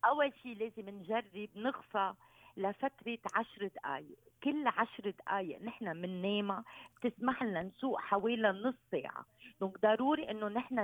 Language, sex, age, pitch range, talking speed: Arabic, female, 50-69, 180-230 Hz, 135 wpm